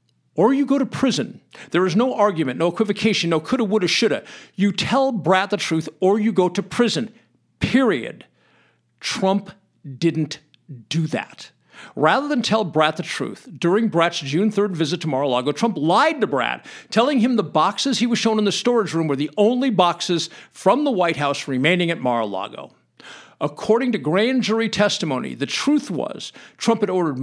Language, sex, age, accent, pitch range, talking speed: English, male, 50-69, American, 150-215 Hz, 175 wpm